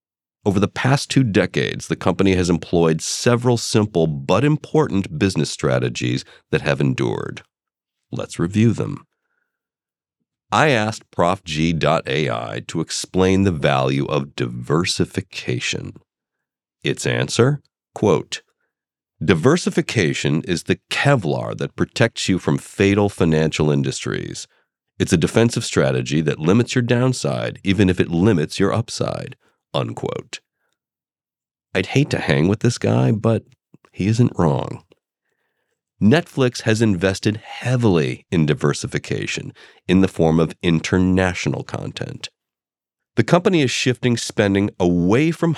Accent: American